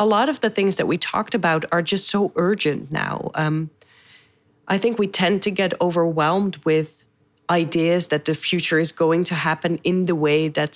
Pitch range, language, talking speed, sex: 155-200 Hz, English, 195 wpm, female